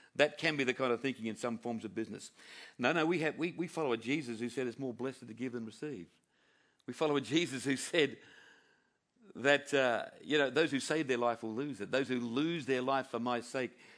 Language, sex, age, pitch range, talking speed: English, male, 50-69, 115-140 Hz, 240 wpm